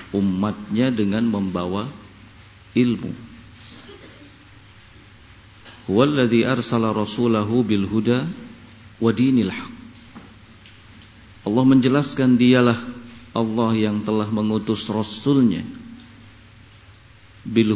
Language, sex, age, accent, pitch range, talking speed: Indonesian, male, 50-69, native, 105-115 Hz, 55 wpm